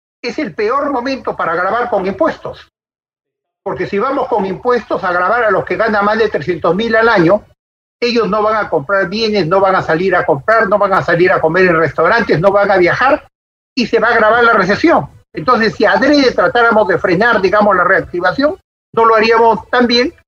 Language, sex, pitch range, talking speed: Spanish, male, 190-250 Hz, 205 wpm